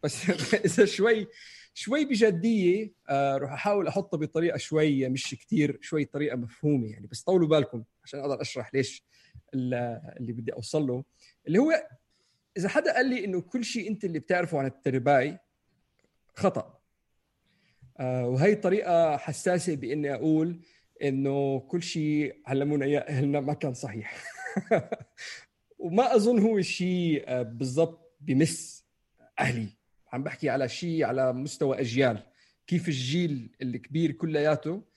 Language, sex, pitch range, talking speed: Arabic, male, 135-180 Hz, 130 wpm